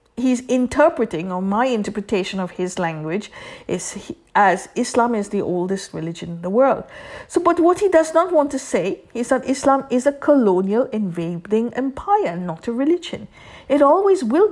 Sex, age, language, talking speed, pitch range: female, 50-69, English, 175 wpm, 195-275 Hz